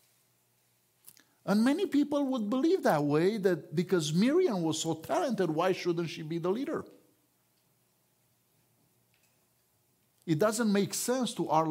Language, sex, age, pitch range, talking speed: English, male, 50-69, 125-180 Hz, 130 wpm